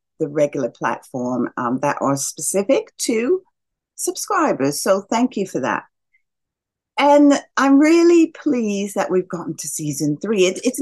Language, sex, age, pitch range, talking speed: English, female, 40-59, 150-245 Hz, 145 wpm